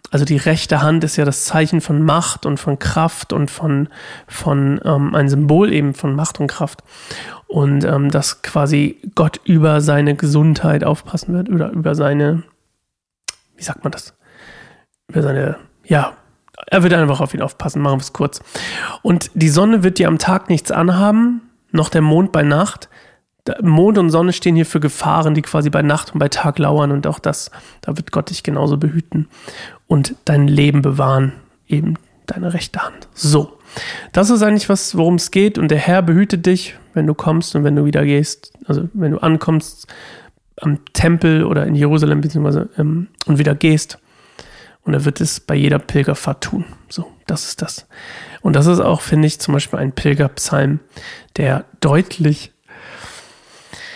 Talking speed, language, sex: 180 wpm, German, male